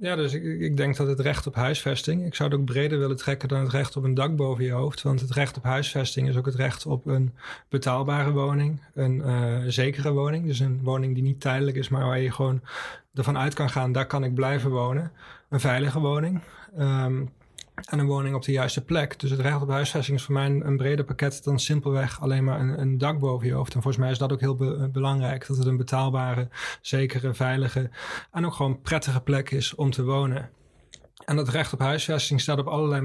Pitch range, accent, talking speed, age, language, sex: 130-145 Hz, Dutch, 225 wpm, 30-49, Dutch, male